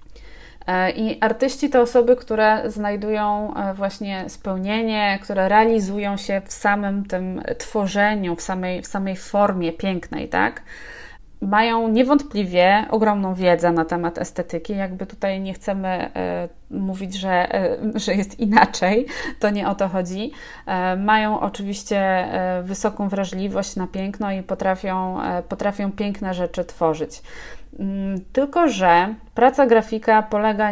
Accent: native